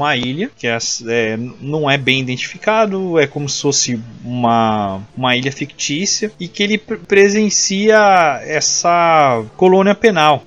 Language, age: Portuguese, 20-39